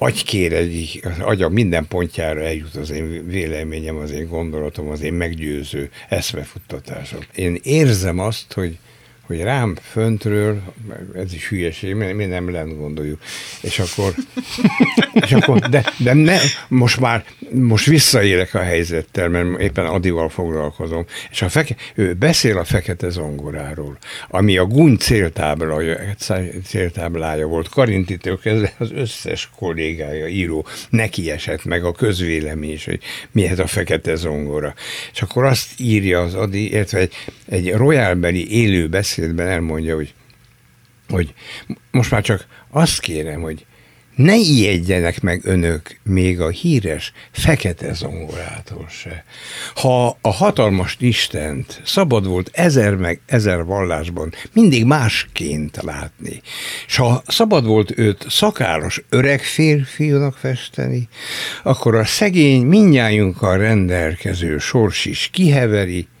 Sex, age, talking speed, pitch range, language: male, 60-79, 125 wpm, 80-120 Hz, Hungarian